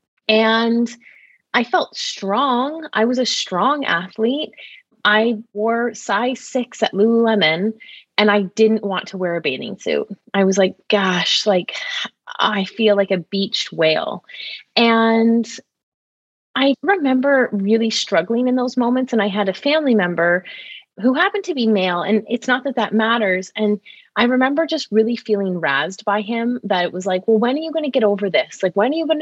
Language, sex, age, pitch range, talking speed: English, female, 30-49, 205-255 Hz, 180 wpm